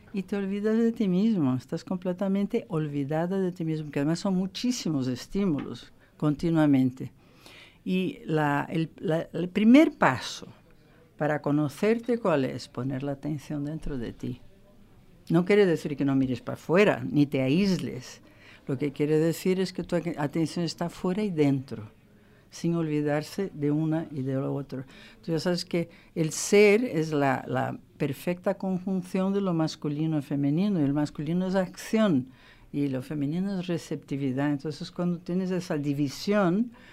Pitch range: 145-185 Hz